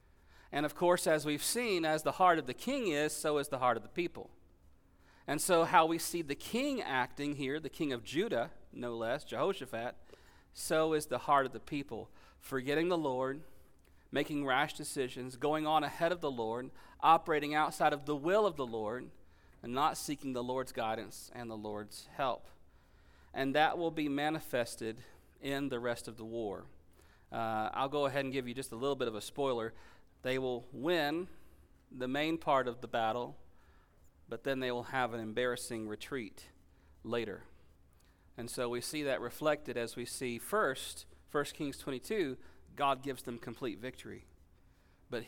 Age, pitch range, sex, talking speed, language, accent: 40-59, 100-145 Hz, male, 180 wpm, English, American